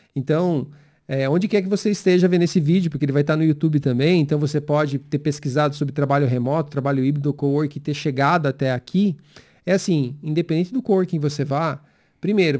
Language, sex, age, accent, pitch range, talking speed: Portuguese, male, 40-59, Brazilian, 145-190 Hz, 195 wpm